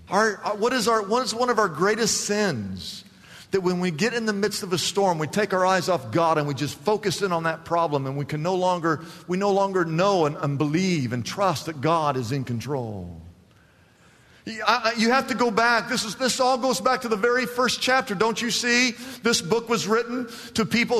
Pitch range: 175-235 Hz